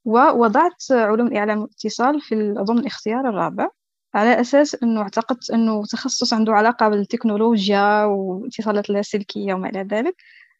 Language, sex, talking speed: Arabic, female, 125 wpm